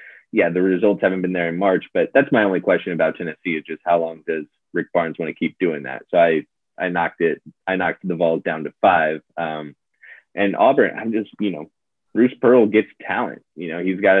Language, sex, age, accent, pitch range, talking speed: English, male, 20-39, American, 85-95 Hz, 230 wpm